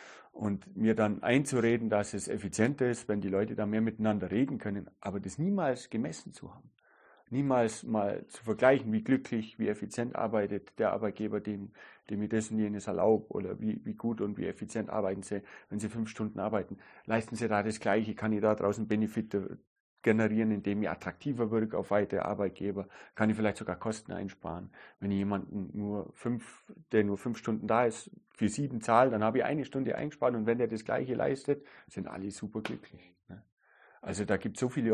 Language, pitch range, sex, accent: German, 100-115 Hz, male, German